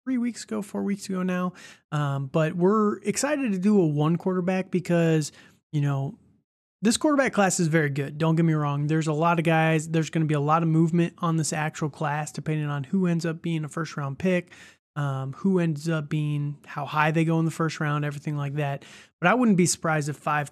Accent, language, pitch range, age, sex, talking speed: American, English, 150-175 Hz, 30-49, male, 230 wpm